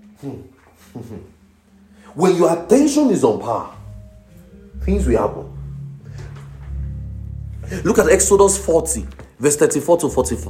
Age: 40-59